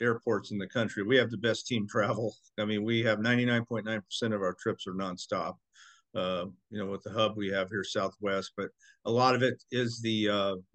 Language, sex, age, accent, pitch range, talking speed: English, male, 50-69, American, 110-130 Hz, 210 wpm